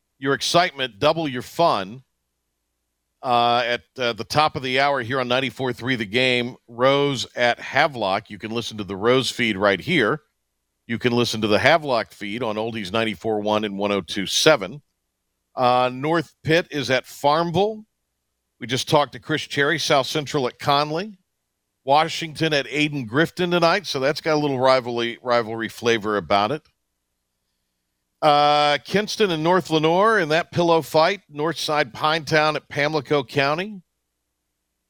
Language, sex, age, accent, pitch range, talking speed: English, male, 50-69, American, 90-145 Hz, 150 wpm